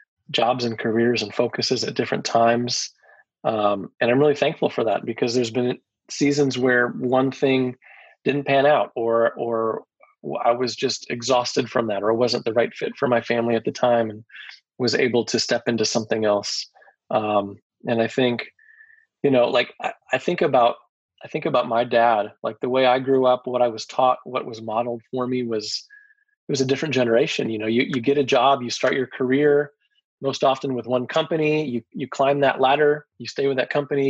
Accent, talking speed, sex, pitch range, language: American, 205 wpm, male, 115-135 Hz, English